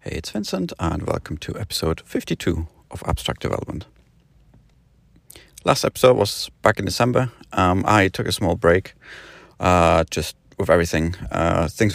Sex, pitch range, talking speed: male, 80-100 Hz, 145 wpm